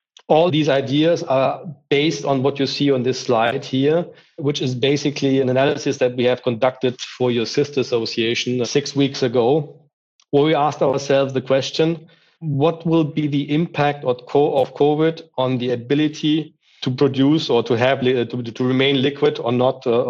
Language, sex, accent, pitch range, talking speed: English, male, German, 120-145 Hz, 165 wpm